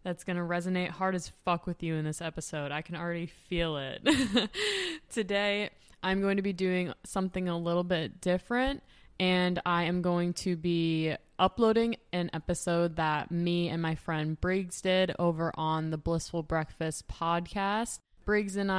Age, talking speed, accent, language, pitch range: 20-39, 165 wpm, American, English, 160-180 Hz